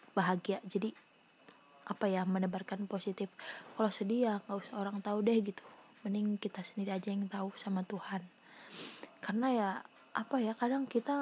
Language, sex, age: Indonesian, female, 20-39